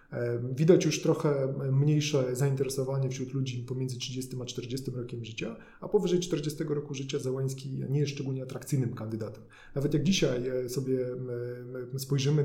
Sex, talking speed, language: male, 140 wpm, Polish